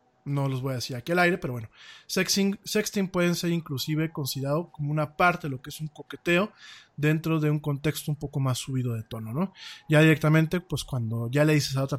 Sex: male